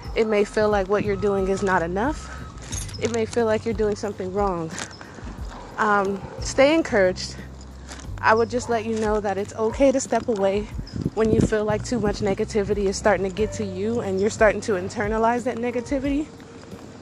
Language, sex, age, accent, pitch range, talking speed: English, female, 20-39, American, 185-215 Hz, 185 wpm